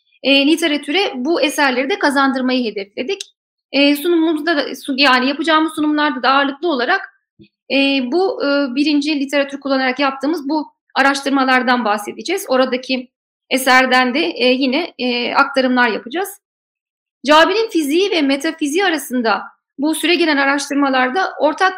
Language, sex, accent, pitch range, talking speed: Turkish, female, native, 265-345 Hz, 115 wpm